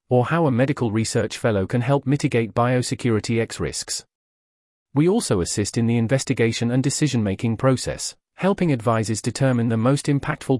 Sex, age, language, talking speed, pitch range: male, 40-59, English, 155 wpm, 110-140 Hz